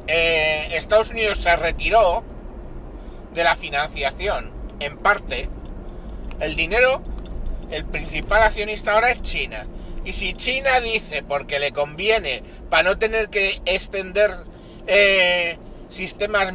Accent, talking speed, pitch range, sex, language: Spanish, 115 wpm, 170-215 Hz, male, Spanish